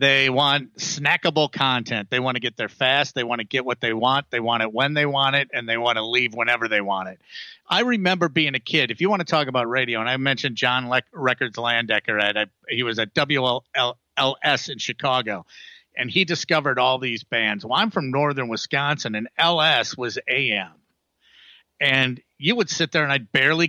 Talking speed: 205 wpm